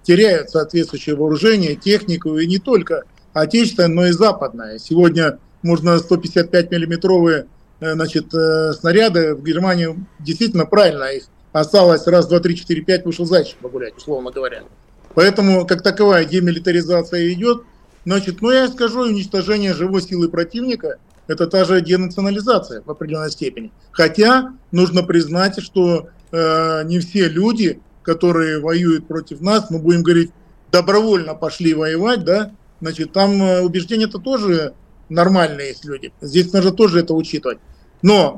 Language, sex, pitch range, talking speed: Russian, male, 165-200 Hz, 130 wpm